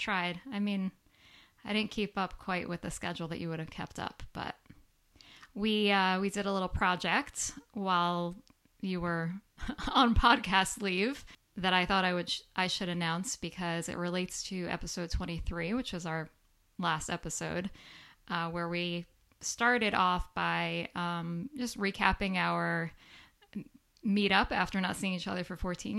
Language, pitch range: English, 170-200 Hz